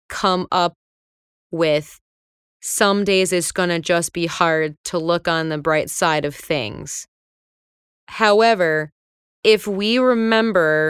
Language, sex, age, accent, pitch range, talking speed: English, female, 20-39, American, 170-205 Hz, 125 wpm